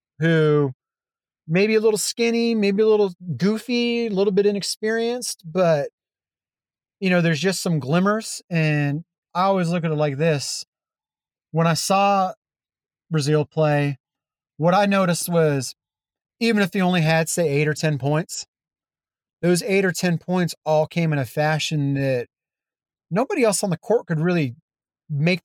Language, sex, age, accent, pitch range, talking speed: English, male, 30-49, American, 155-195 Hz, 160 wpm